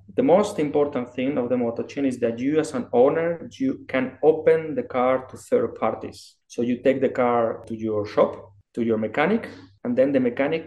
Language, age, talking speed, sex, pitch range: English, 20-39, 210 wpm, male, 115-145 Hz